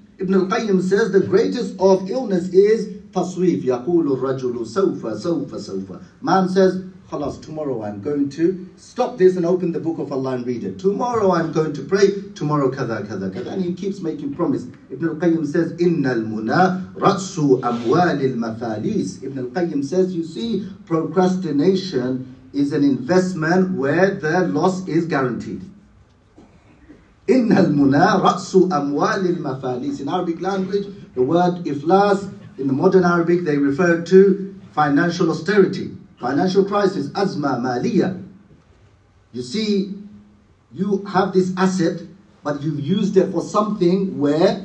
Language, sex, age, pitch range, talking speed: English, male, 50-69, 135-190 Hz, 130 wpm